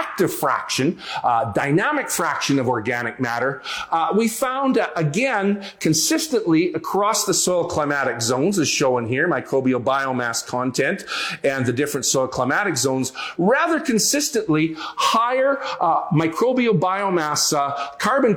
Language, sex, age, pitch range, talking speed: English, male, 40-59, 145-210 Hz, 125 wpm